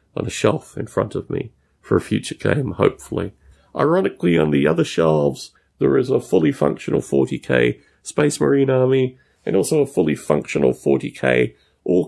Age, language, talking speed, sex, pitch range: 30-49, English, 155 wpm, male, 75-125 Hz